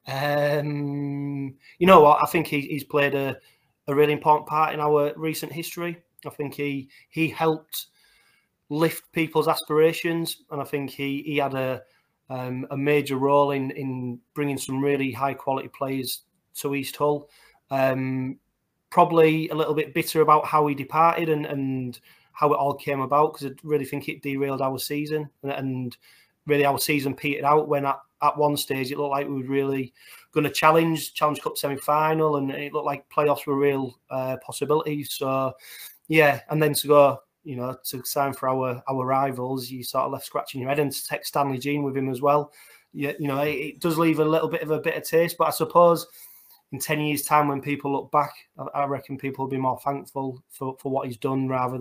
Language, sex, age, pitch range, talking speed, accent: English, male, 30-49, 135-150 Hz, 205 wpm, British